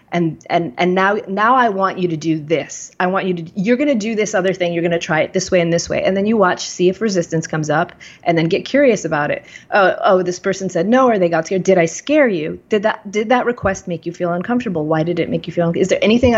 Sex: female